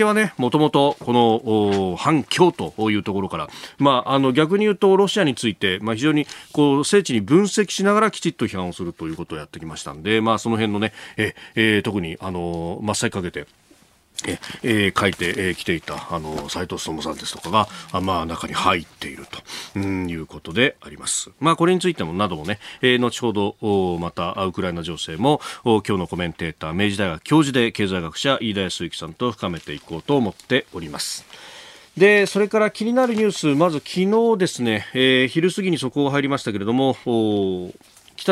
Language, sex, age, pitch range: Japanese, male, 40-59, 100-150 Hz